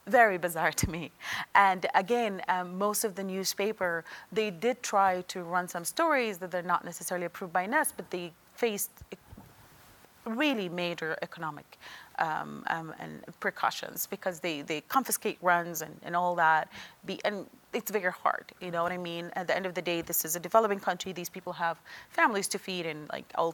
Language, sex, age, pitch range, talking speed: English, female, 30-49, 175-215 Hz, 185 wpm